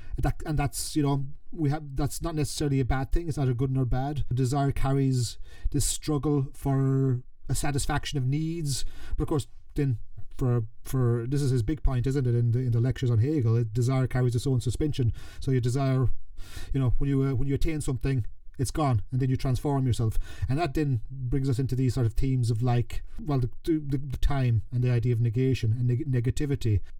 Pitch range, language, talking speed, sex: 120-145 Hz, English, 220 wpm, male